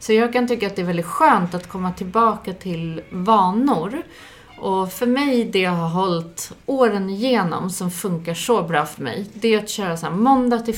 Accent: native